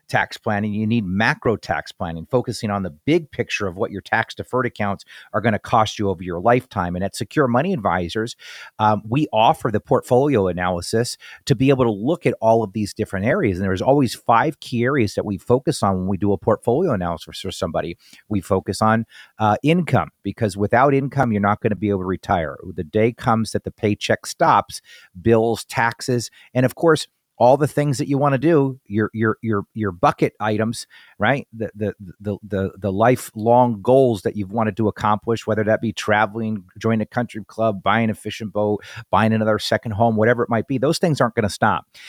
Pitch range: 100-120 Hz